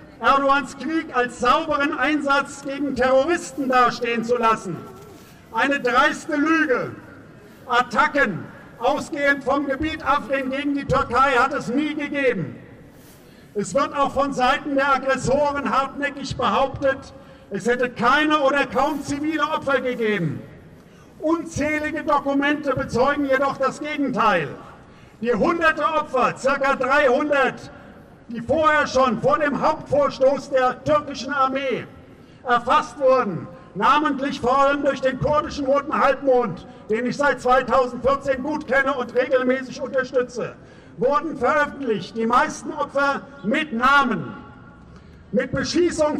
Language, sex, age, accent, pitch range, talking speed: German, male, 50-69, German, 255-285 Hz, 115 wpm